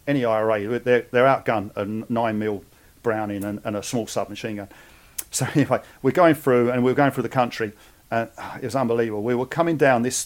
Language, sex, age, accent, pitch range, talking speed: English, male, 40-59, British, 110-130 Hz, 205 wpm